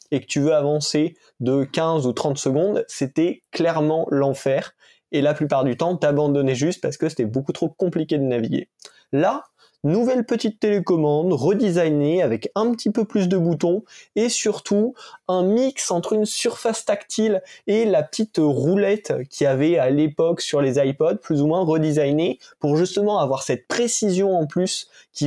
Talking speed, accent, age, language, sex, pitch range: 170 wpm, French, 20-39, French, male, 135-180 Hz